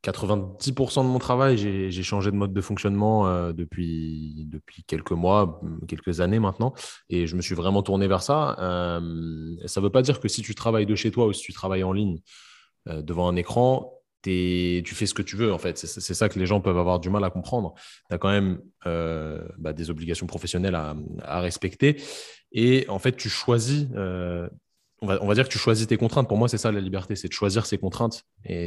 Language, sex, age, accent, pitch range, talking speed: French, male, 20-39, French, 90-105 Hz, 220 wpm